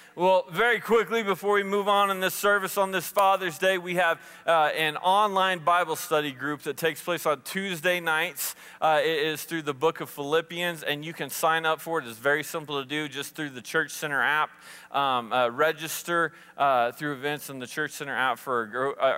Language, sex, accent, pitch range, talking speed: English, male, American, 130-160 Hz, 210 wpm